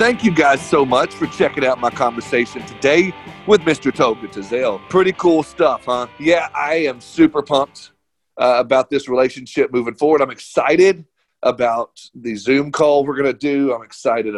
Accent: American